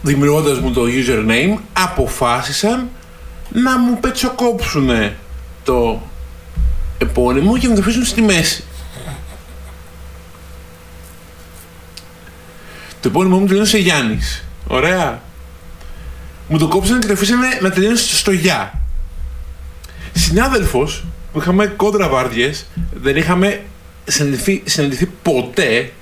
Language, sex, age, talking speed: Greek, male, 50-69, 95 wpm